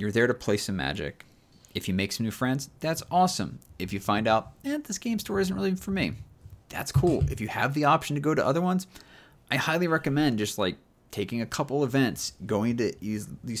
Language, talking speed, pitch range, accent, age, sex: English, 220 wpm, 105-145 Hz, American, 30-49, male